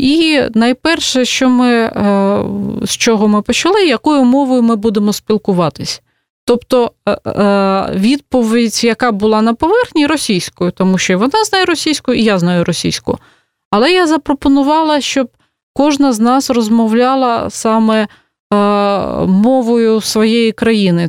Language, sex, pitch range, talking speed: Russian, female, 205-250 Hz, 115 wpm